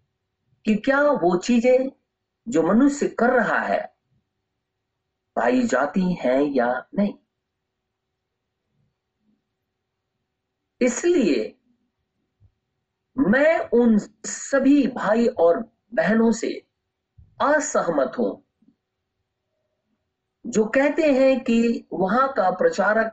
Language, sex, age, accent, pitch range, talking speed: Hindi, male, 50-69, native, 185-255 Hz, 80 wpm